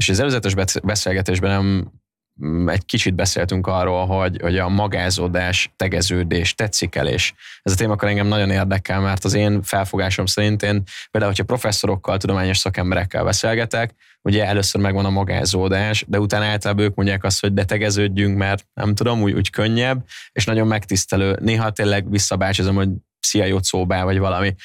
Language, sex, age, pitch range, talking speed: Hungarian, male, 20-39, 95-105 Hz, 160 wpm